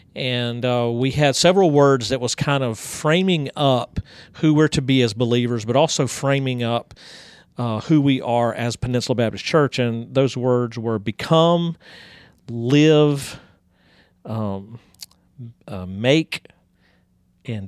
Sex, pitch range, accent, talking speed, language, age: male, 120-145 Hz, American, 135 wpm, English, 40-59